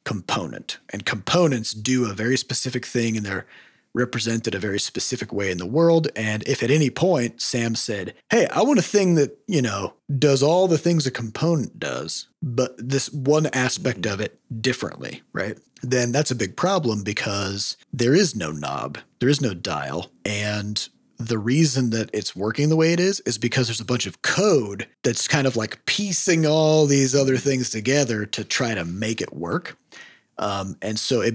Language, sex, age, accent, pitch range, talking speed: English, male, 30-49, American, 105-140 Hz, 190 wpm